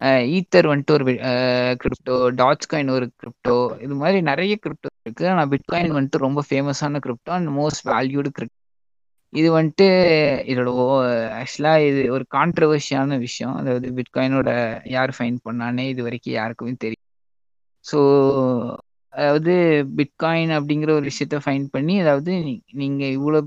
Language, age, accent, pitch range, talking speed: Tamil, 20-39, native, 130-155 Hz, 135 wpm